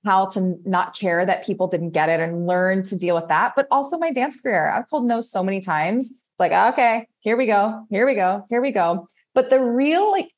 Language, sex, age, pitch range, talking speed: English, female, 20-39, 185-235 Hz, 245 wpm